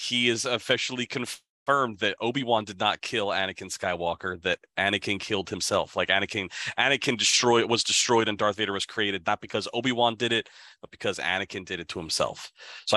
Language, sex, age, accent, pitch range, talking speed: English, male, 30-49, American, 100-115 Hz, 190 wpm